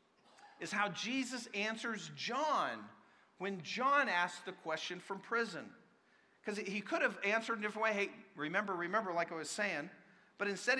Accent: American